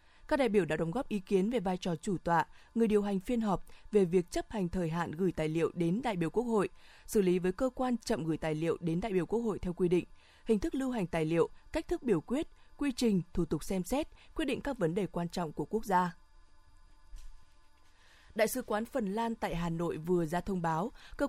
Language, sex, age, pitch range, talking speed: Vietnamese, female, 20-39, 175-225 Hz, 250 wpm